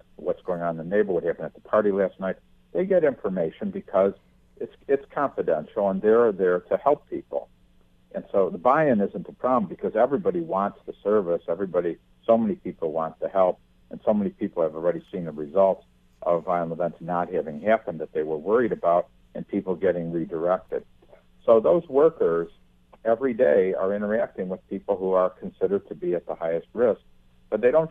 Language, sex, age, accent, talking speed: English, male, 60-79, American, 195 wpm